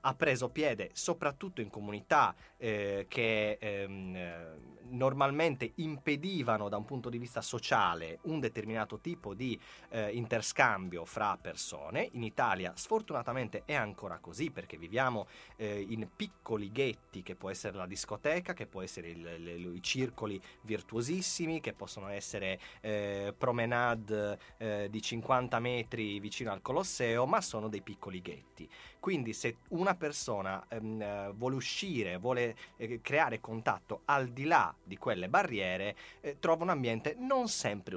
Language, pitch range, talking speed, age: Italian, 100-140 Hz, 140 wpm, 30-49